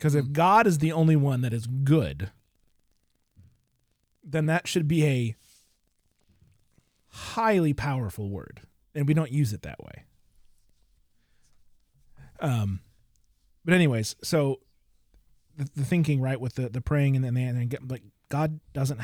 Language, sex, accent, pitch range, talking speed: English, male, American, 95-130 Hz, 140 wpm